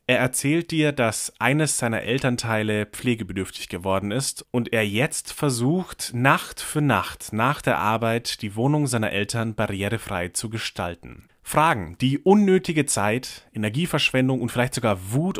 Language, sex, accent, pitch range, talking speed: German, male, German, 105-135 Hz, 140 wpm